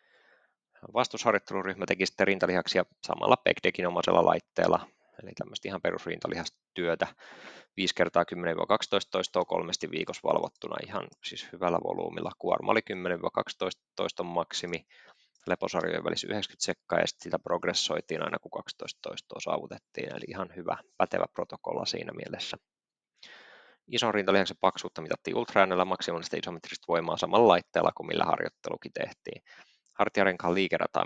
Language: Finnish